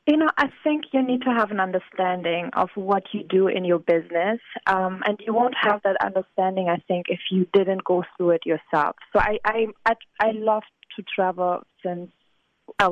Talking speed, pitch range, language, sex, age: 195 wpm, 180-225 Hz, English, female, 20-39